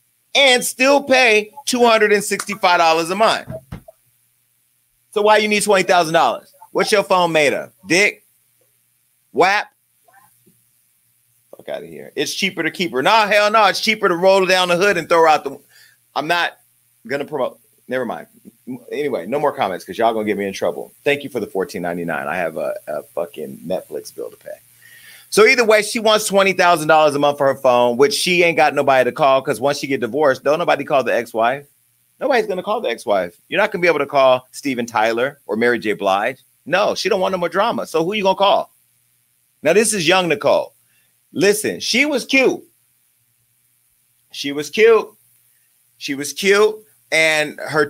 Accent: American